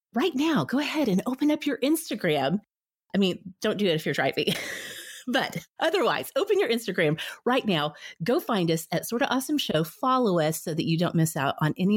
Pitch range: 165-255 Hz